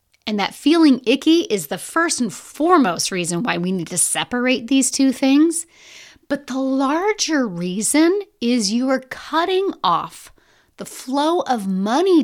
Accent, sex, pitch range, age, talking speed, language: American, female, 185-275 Hz, 30-49, 150 wpm, English